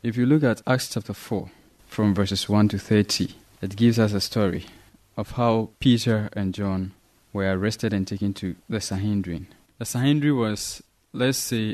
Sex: male